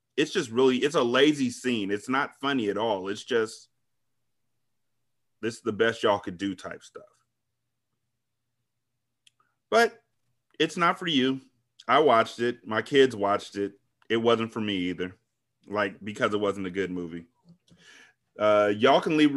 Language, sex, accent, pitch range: English, male, American, 110-130 Hz